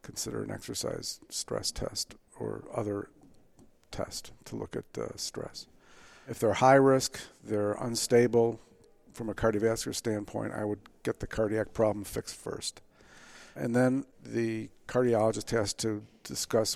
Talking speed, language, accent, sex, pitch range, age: 135 wpm, English, American, male, 110-125 Hz, 50-69